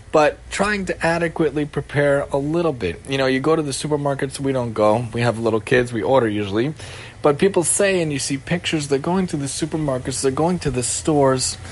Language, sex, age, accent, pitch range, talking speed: English, male, 20-39, American, 115-150 Hz, 215 wpm